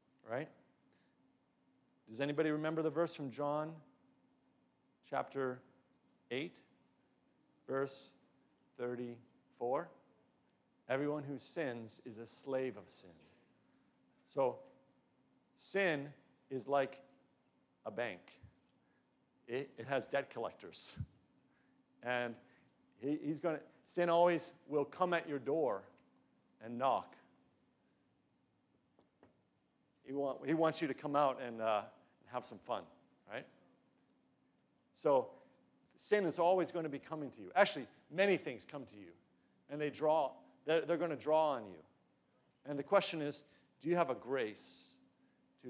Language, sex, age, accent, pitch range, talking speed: English, male, 40-59, American, 125-160 Hz, 120 wpm